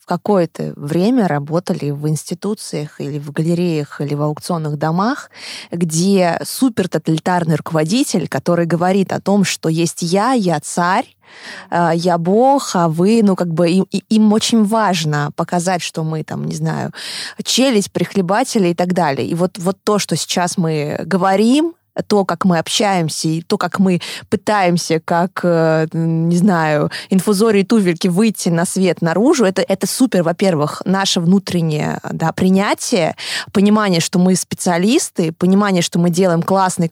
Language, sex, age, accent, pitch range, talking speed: Russian, female, 20-39, native, 170-200 Hz, 145 wpm